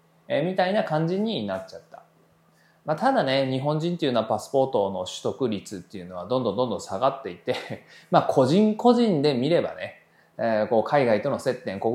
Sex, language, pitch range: male, Japanese, 110-180 Hz